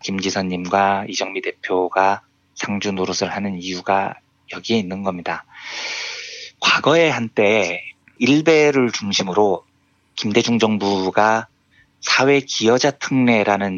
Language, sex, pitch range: Korean, male, 95-115 Hz